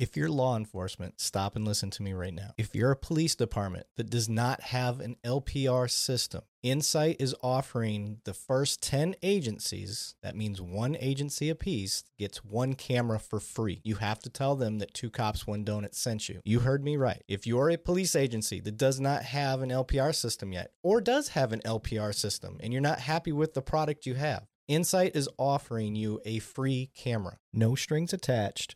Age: 30-49